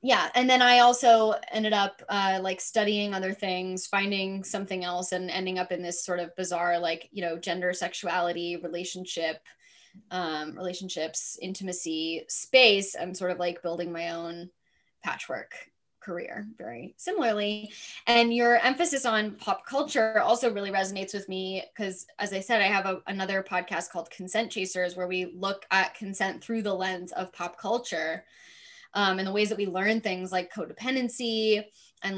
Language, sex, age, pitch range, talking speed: English, female, 10-29, 180-215 Hz, 165 wpm